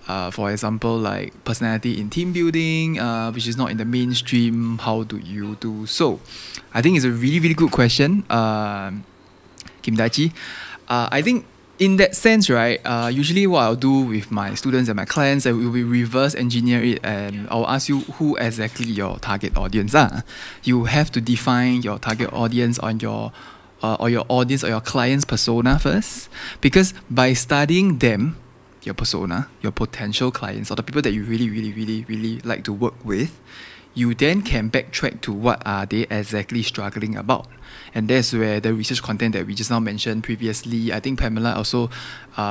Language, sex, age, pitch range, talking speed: English, male, 20-39, 110-130 Hz, 190 wpm